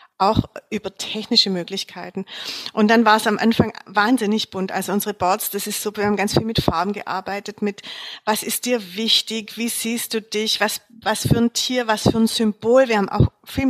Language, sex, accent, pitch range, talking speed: German, female, German, 200-230 Hz, 205 wpm